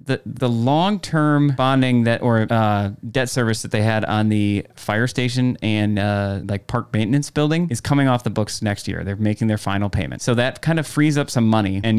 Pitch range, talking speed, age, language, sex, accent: 105-125 Hz, 215 wpm, 20-39, English, male, American